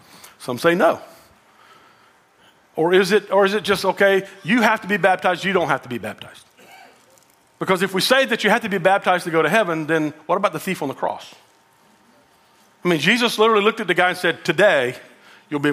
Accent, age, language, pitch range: American, 40-59, English, 160-220 Hz